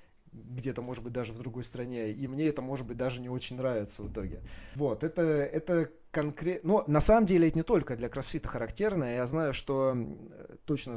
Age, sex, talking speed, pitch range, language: 20-39, male, 190 wpm, 110-135 Hz, Russian